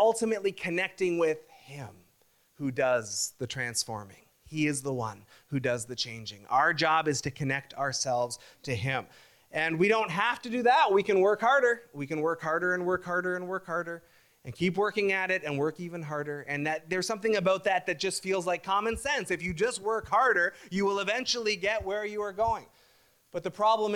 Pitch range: 130-190 Hz